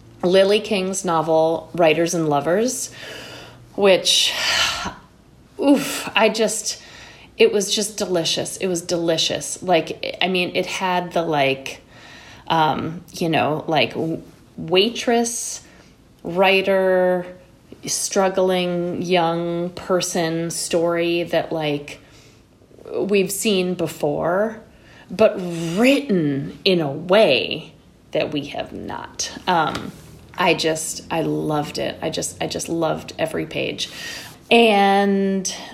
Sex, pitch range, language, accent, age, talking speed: female, 160-200 Hz, English, American, 30-49, 105 wpm